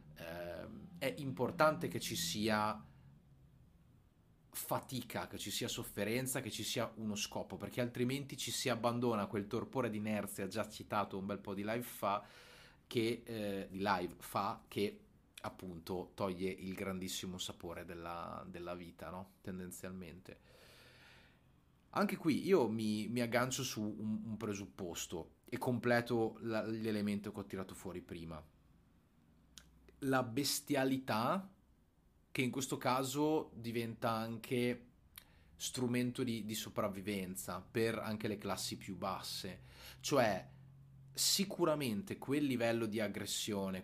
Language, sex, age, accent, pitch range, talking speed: Italian, male, 30-49, native, 95-120 Hz, 125 wpm